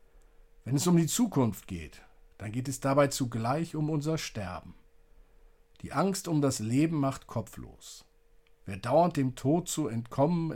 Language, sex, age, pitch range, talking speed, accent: German, male, 50-69, 115-150 Hz, 155 wpm, German